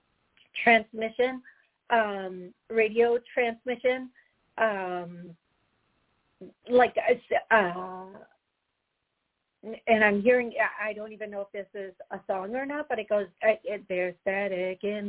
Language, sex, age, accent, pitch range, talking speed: English, female, 40-59, American, 195-235 Hz, 105 wpm